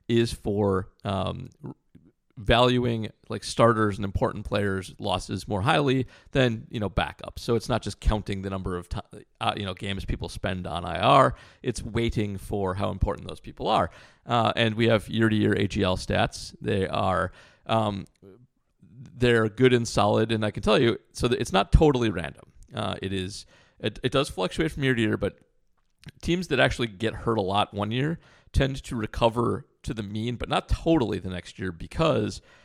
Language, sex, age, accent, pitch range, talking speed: English, male, 40-59, American, 95-120 Hz, 185 wpm